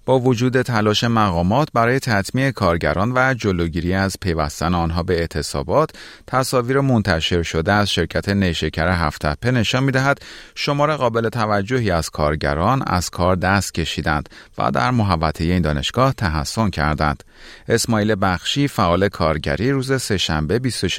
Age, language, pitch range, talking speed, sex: 30-49, Persian, 85-120 Hz, 130 wpm, male